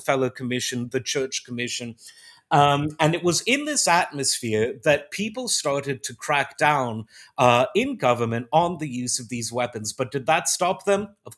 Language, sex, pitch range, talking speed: English, male, 125-175 Hz, 175 wpm